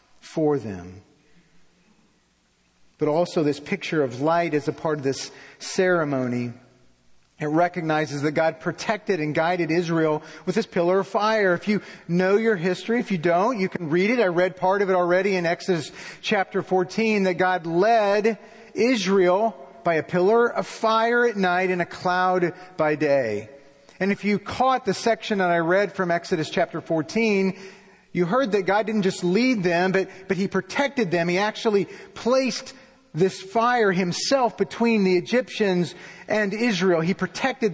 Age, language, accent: 40-59, English, American